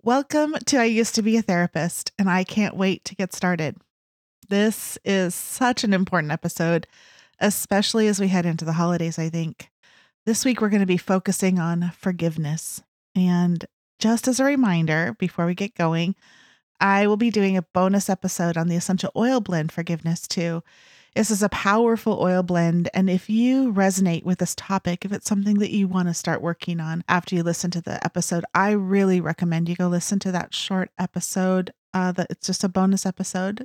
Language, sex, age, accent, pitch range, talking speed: English, female, 30-49, American, 170-205 Hz, 195 wpm